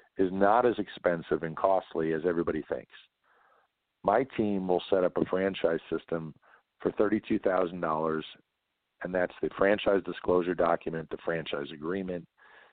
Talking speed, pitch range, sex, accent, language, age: 130 wpm, 90-105 Hz, male, American, English, 50-69